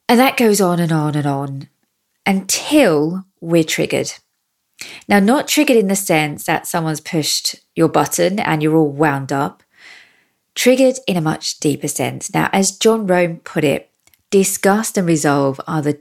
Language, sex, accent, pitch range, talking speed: English, female, British, 155-190 Hz, 165 wpm